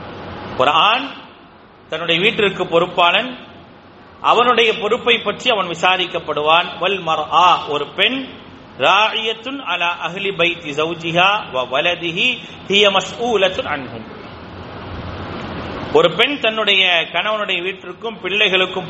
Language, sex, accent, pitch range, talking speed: English, male, Indian, 145-185 Hz, 70 wpm